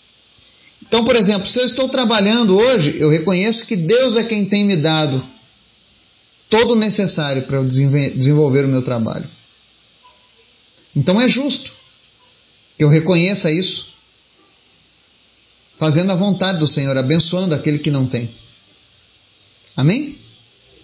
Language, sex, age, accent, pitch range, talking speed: Portuguese, male, 30-49, Brazilian, 145-220 Hz, 125 wpm